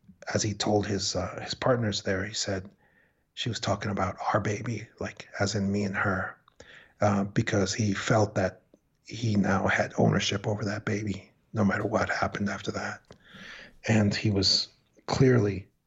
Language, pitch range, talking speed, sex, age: English, 100-110 Hz, 165 wpm, male, 40-59